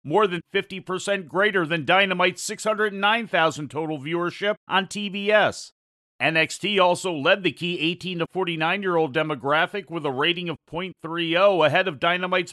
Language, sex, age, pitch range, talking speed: English, male, 40-59, 150-185 Hz, 135 wpm